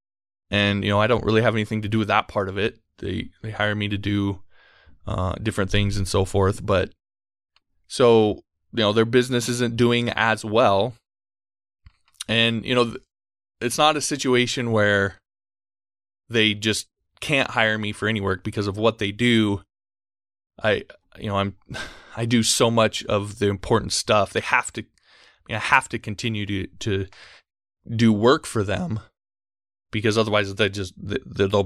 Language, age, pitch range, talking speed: English, 20-39, 100-110 Hz, 170 wpm